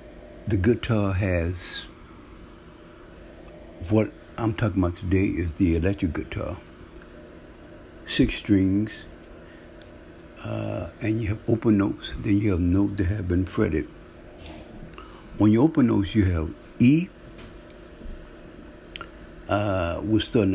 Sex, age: male, 60-79